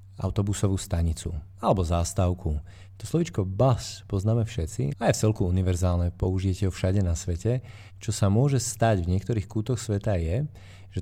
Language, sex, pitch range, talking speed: Slovak, male, 90-105 Hz, 160 wpm